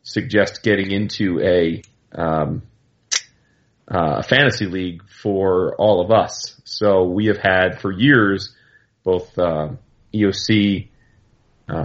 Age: 30-49